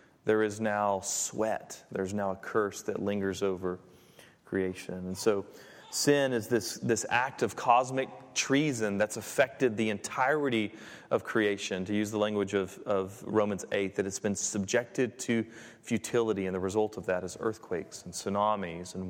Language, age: English, 30-49